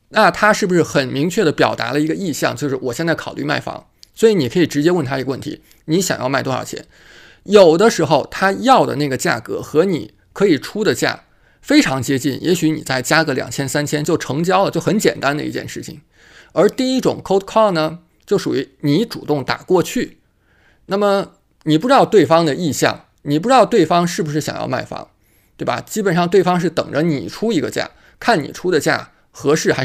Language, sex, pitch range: Chinese, male, 145-190 Hz